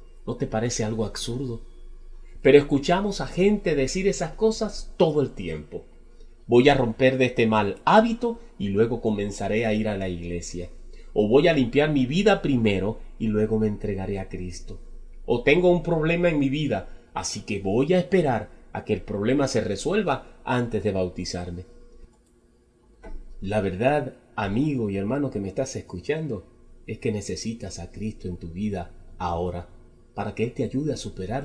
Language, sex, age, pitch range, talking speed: Spanish, male, 30-49, 95-140 Hz, 170 wpm